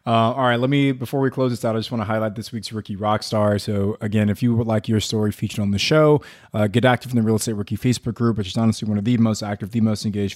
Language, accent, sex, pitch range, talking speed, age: English, American, male, 105-125 Hz, 305 wpm, 20-39